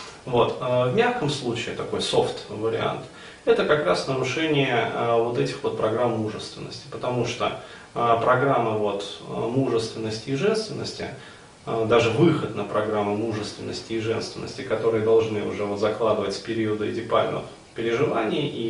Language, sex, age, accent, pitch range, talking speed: Russian, male, 30-49, native, 110-145 Hz, 125 wpm